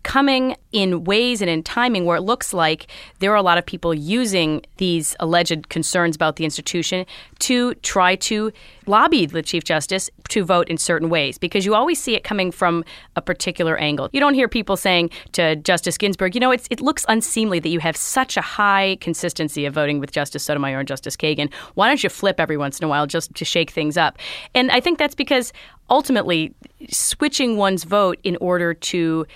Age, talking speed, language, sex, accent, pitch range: 30-49, 200 wpm, English, female, American, 160-205 Hz